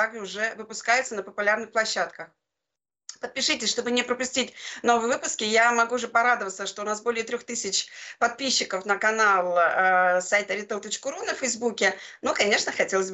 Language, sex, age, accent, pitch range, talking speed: Russian, female, 30-49, native, 210-255 Hz, 145 wpm